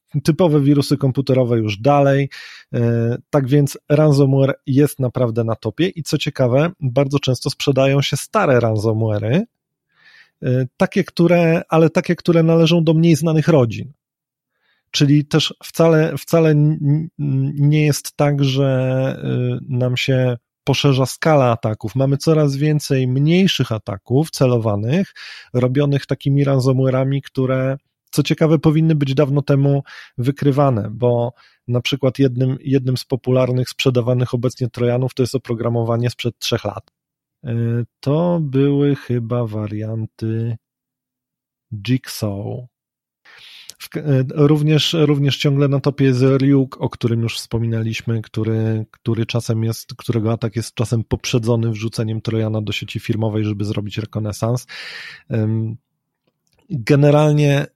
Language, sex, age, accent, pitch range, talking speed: Polish, male, 30-49, native, 120-145 Hz, 115 wpm